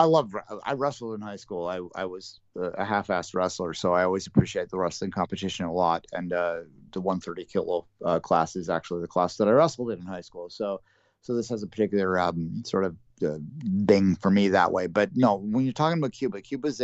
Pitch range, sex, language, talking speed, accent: 95-115 Hz, male, English, 230 wpm, American